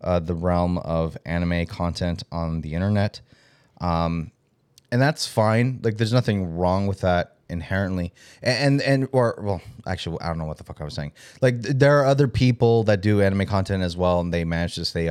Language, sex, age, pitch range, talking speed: English, male, 30-49, 85-115 Hz, 200 wpm